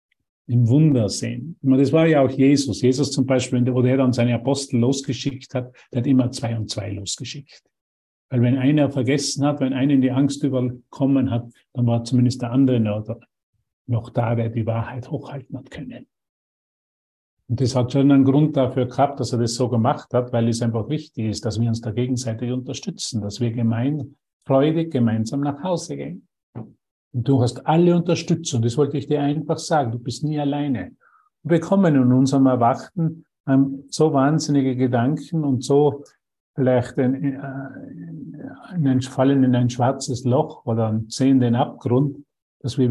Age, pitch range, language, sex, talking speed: 50-69, 120-140 Hz, German, male, 170 wpm